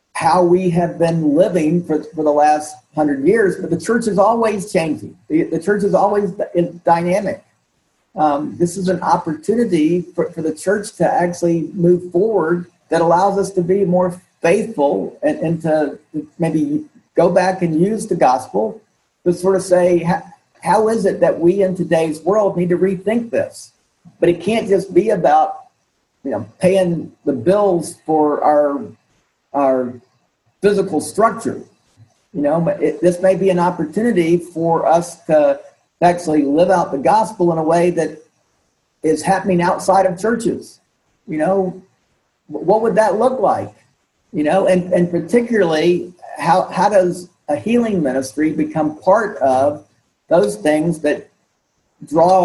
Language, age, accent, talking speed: English, 50-69, American, 160 wpm